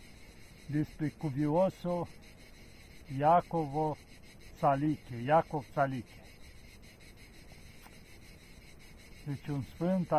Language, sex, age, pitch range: Romanian, male, 50-69, 130-160 Hz